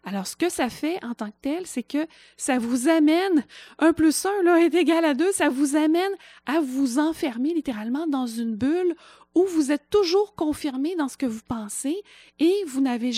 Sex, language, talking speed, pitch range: female, French, 200 wpm, 235-315 Hz